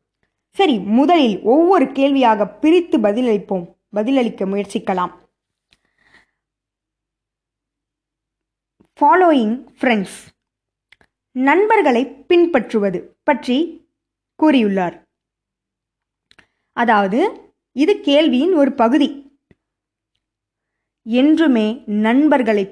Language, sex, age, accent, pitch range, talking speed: Tamil, female, 20-39, native, 210-285 Hz, 50 wpm